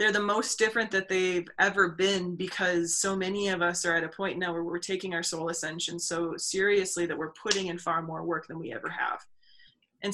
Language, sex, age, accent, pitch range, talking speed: English, female, 20-39, American, 170-200 Hz, 225 wpm